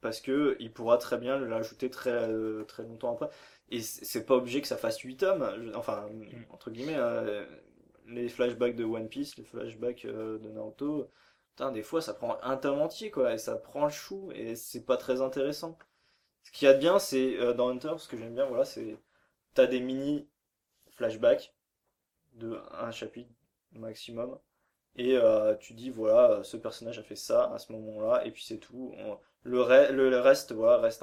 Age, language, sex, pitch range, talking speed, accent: 20-39, French, male, 110-140 Hz, 195 wpm, French